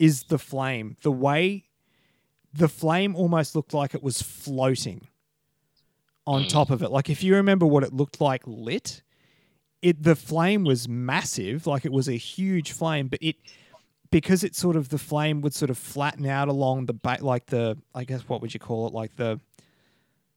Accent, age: Australian, 30-49